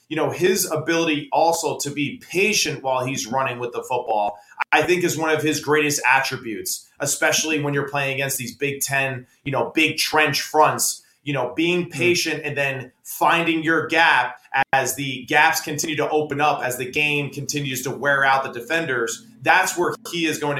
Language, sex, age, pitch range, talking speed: English, male, 30-49, 135-160 Hz, 190 wpm